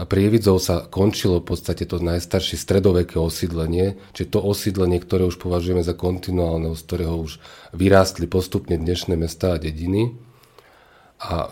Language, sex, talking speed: Slovak, male, 140 wpm